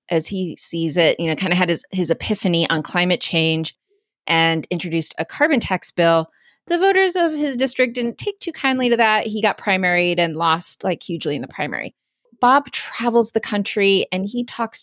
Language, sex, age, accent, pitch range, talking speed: English, female, 30-49, American, 185-230 Hz, 200 wpm